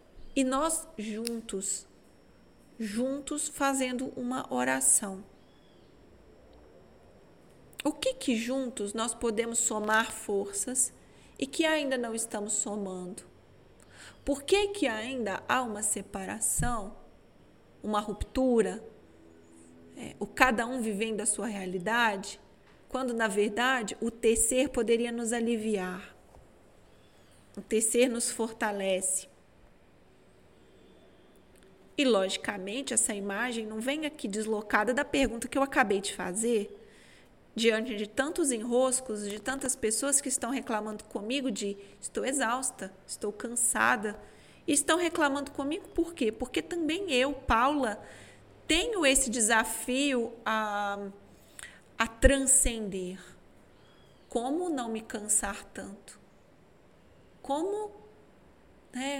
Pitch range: 205-260 Hz